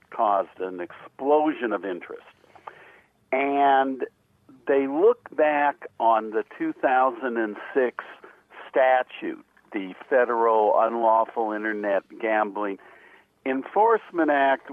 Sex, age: male, 60-79